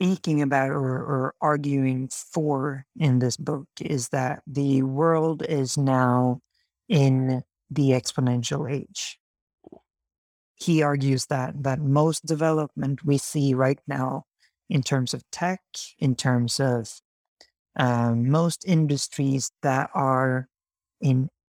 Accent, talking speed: American, 115 wpm